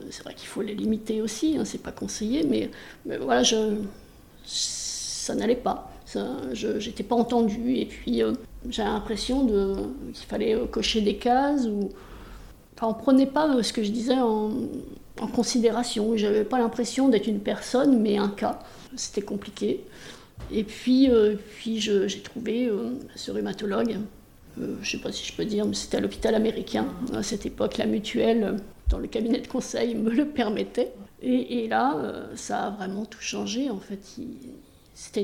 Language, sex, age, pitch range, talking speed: French, female, 50-69, 210-250 Hz, 185 wpm